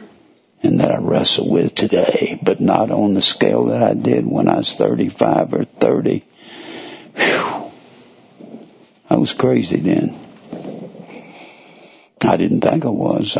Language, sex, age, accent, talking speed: English, male, 60-79, American, 130 wpm